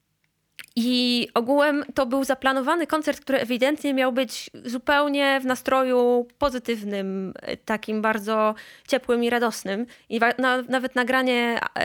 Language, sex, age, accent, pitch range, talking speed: Polish, female, 20-39, native, 205-255 Hz, 110 wpm